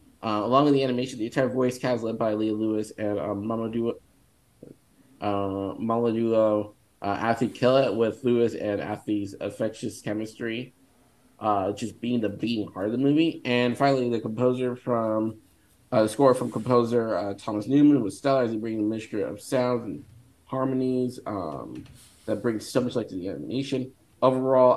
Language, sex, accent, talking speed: English, male, American, 165 wpm